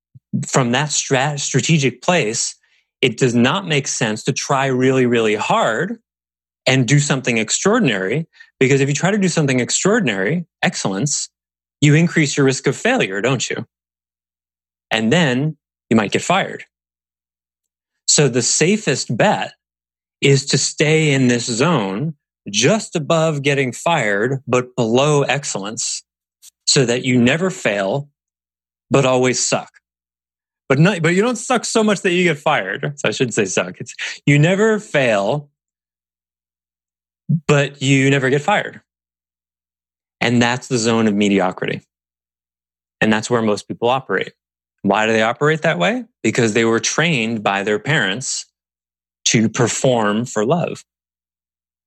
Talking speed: 140 wpm